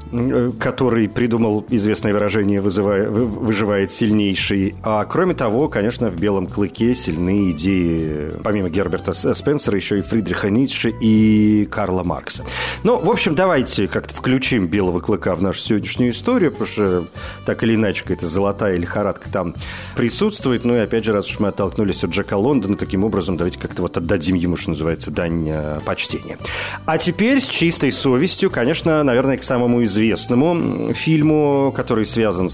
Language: Russian